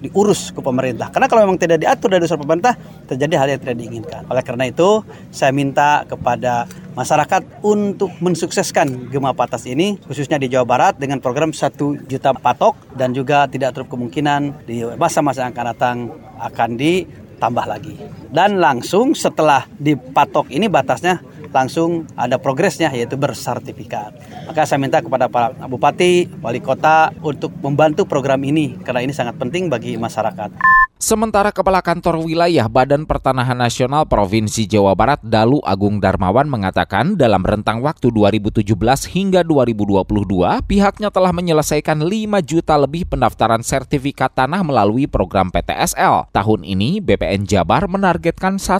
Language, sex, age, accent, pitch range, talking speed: Indonesian, male, 30-49, native, 120-170 Hz, 145 wpm